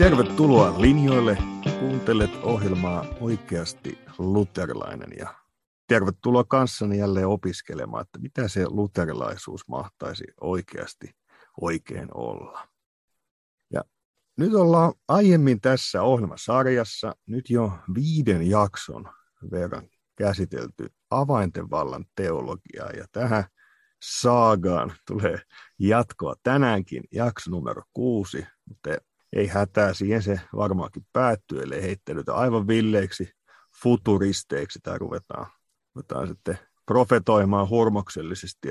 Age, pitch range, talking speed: 50-69, 95-120 Hz, 90 wpm